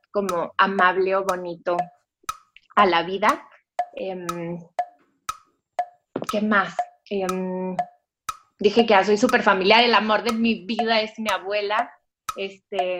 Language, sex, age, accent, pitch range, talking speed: Spanish, female, 20-39, Mexican, 200-265 Hz, 120 wpm